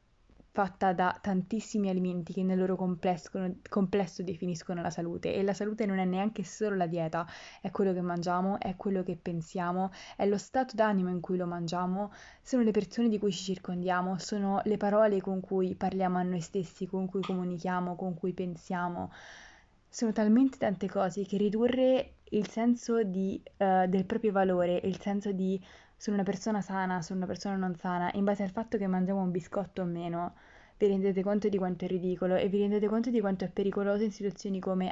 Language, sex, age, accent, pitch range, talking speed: Italian, female, 20-39, native, 180-205 Hz, 190 wpm